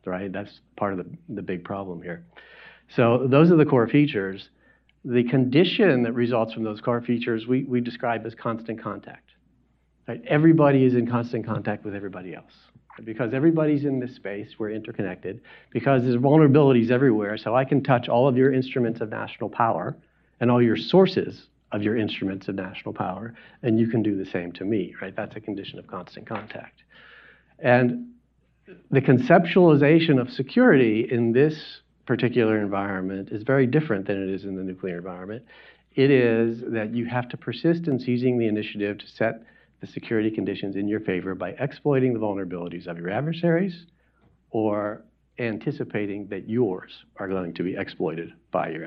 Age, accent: 40-59, American